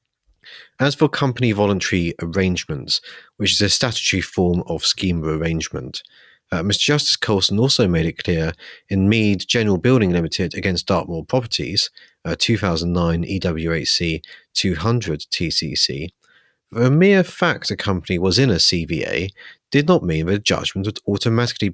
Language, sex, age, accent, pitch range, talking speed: English, male, 40-59, British, 90-125 Hz, 145 wpm